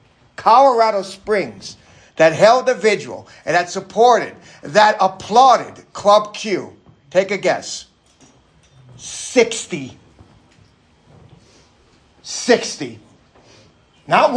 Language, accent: English, American